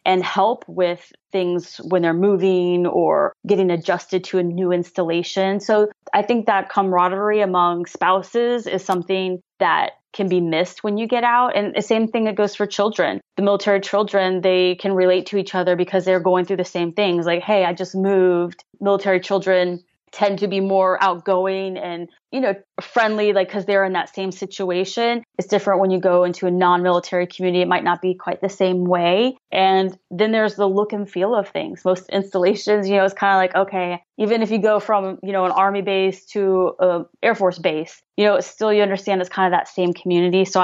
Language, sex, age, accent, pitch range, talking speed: English, female, 20-39, American, 180-200 Hz, 205 wpm